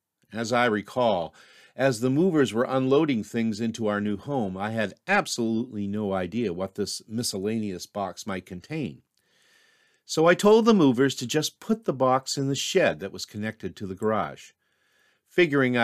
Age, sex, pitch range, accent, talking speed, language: 50-69, male, 105-140 Hz, American, 165 wpm, English